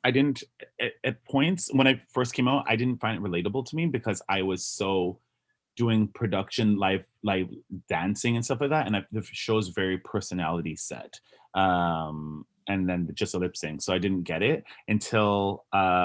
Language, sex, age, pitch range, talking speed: English, male, 30-49, 90-110 Hz, 185 wpm